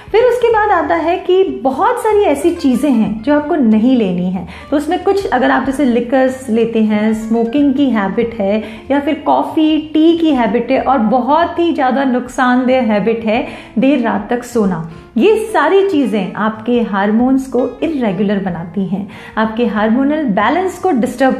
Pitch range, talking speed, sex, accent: 220-310 Hz, 170 wpm, female, native